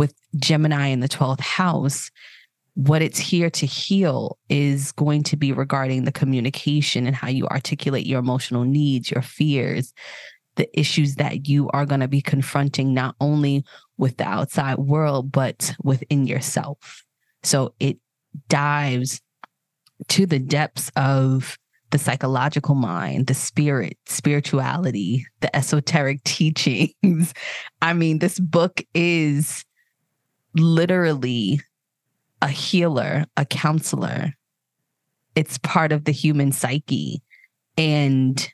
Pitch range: 135-160 Hz